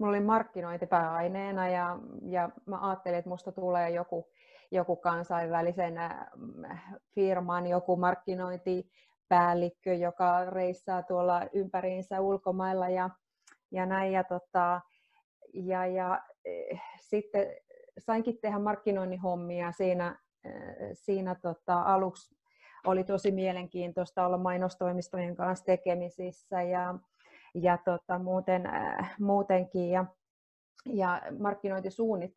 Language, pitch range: Finnish, 180-210 Hz